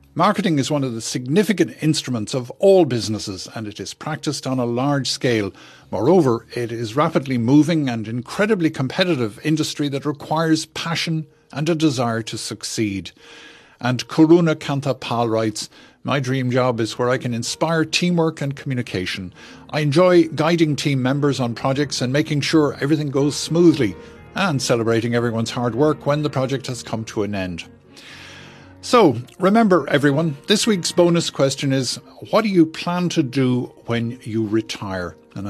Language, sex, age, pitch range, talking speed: English, male, 50-69, 115-155 Hz, 160 wpm